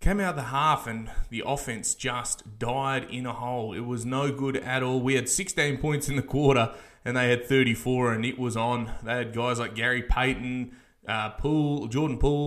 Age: 20-39